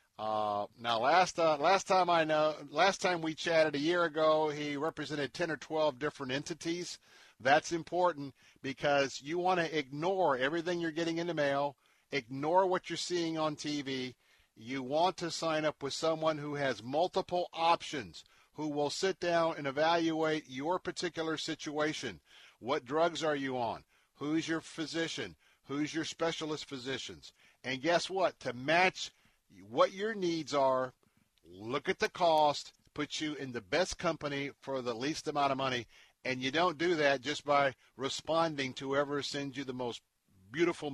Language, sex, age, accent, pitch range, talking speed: English, male, 50-69, American, 135-170 Hz, 165 wpm